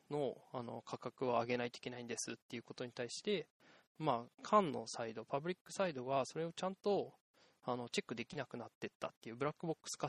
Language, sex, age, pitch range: Japanese, male, 20-39, 120-175 Hz